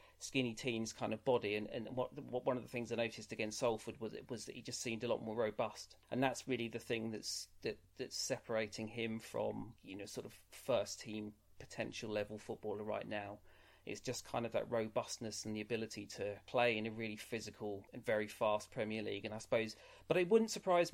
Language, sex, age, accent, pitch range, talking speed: English, male, 30-49, British, 110-125 Hz, 220 wpm